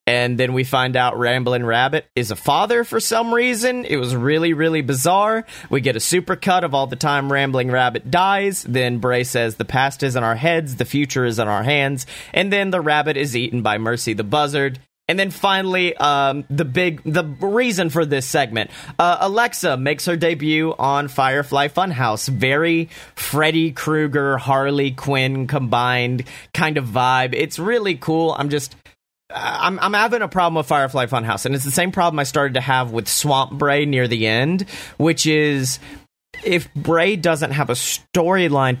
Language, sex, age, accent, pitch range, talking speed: English, male, 30-49, American, 130-165 Hz, 185 wpm